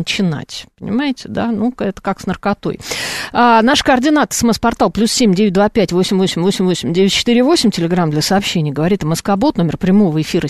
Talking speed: 200 wpm